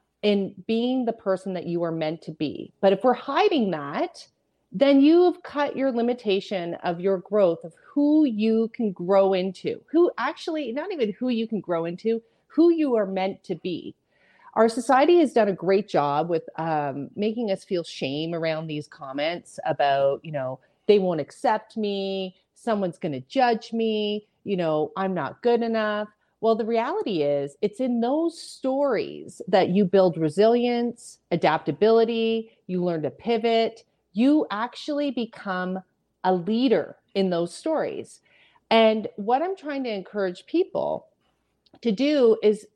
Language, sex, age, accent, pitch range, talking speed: English, female, 30-49, American, 185-250 Hz, 155 wpm